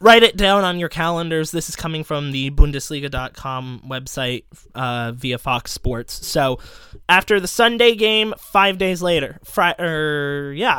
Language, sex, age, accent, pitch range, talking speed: English, male, 20-39, American, 150-190 Hz, 150 wpm